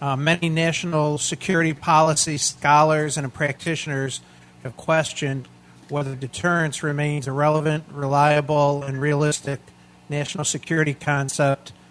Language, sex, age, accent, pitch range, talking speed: English, male, 50-69, American, 135-160 Hz, 105 wpm